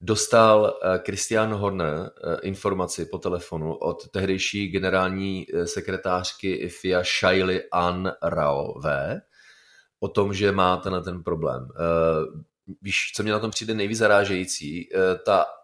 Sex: male